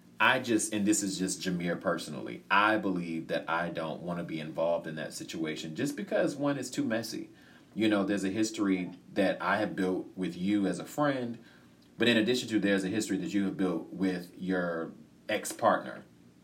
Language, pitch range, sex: English, 80-100 Hz, male